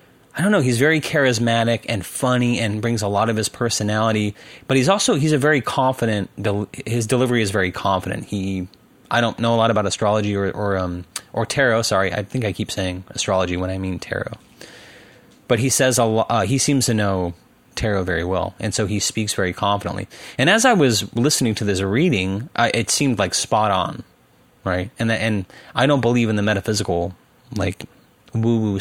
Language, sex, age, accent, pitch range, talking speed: English, male, 30-49, American, 100-120 Hz, 200 wpm